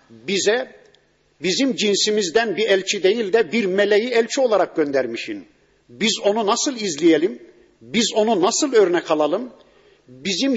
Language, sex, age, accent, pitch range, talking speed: Turkish, male, 50-69, native, 180-235 Hz, 125 wpm